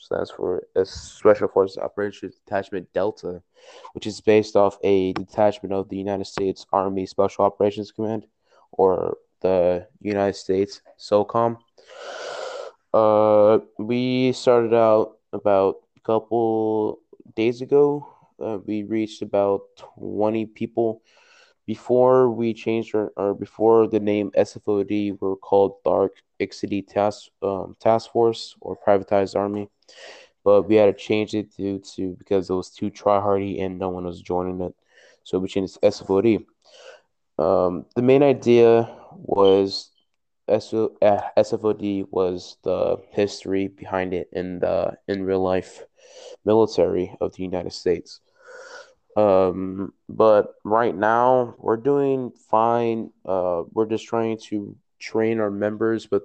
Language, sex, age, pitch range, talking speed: English, male, 20-39, 100-120 Hz, 135 wpm